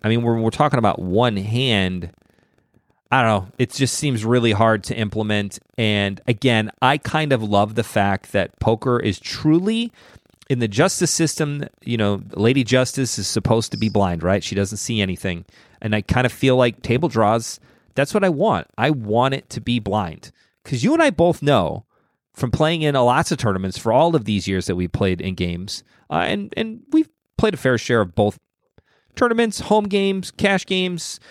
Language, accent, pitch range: English, American, 110-165 Hz